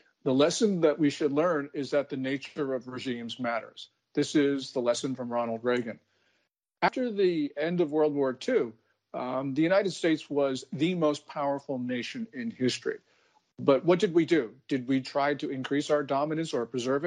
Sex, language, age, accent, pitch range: male, Chinese, 50-69, American, 130-160 Hz